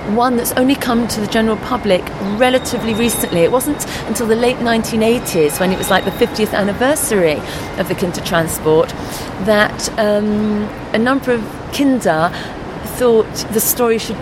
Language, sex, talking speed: English, female, 155 wpm